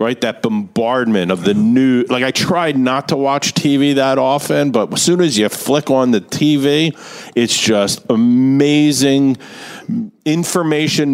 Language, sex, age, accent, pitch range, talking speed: English, male, 40-59, American, 115-160 Hz, 150 wpm